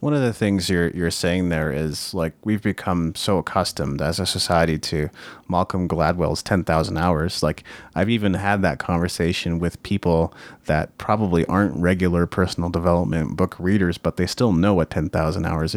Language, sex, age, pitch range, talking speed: English, male, 30-49, 85-105 Hz, 170 wpm